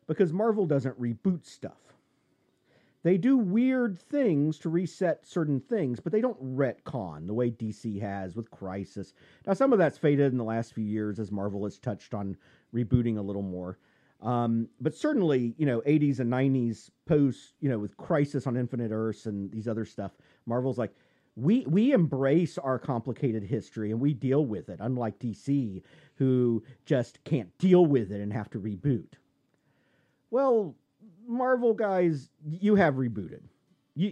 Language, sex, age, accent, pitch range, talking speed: English, male, 40-59, American, 115-175 Hz, 165 wpm